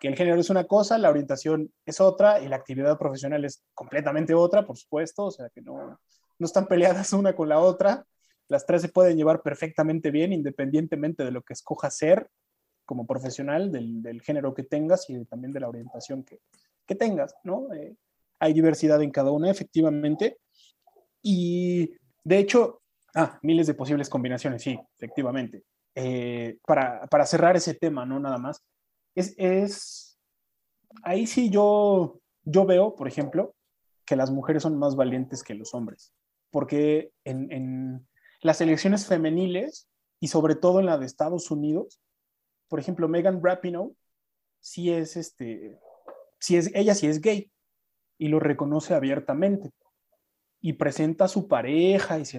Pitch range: 140-185 Hz